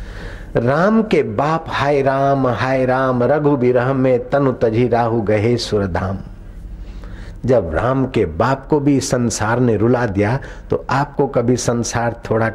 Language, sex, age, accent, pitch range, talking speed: Hindi, male, 60-79, native, 100-140 Hz, 140 wpm